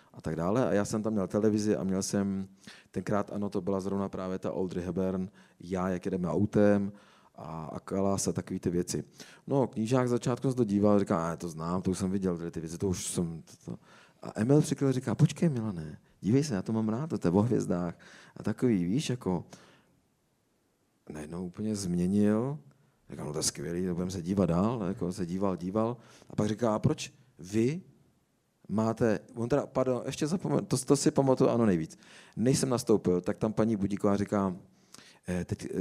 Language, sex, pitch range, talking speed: Czech, male, 90-115 Hz, 200 wpm